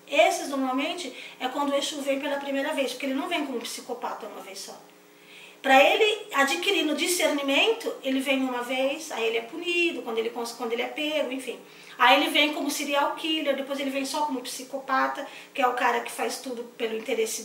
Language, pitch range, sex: Portuguese, 240-300 Hz, female